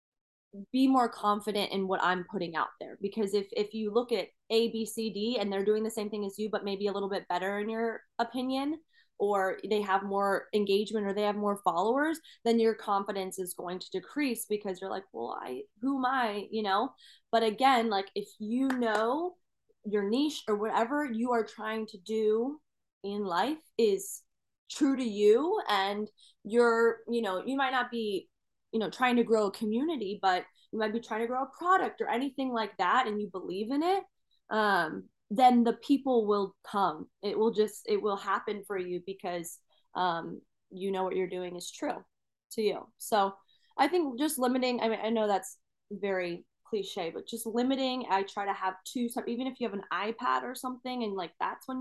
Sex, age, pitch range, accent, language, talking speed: female, 20-39, 200-250 Hz, American, English, 200 wpm